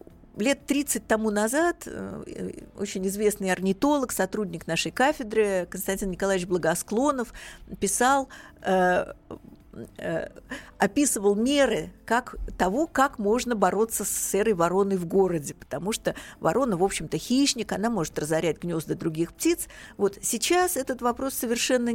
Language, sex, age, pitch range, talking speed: Russian, female, 50-69, 195-250 Hz, 125 wpm